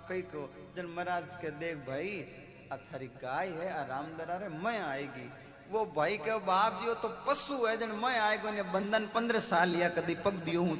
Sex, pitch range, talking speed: male, 140-190 Hz, 155 wpm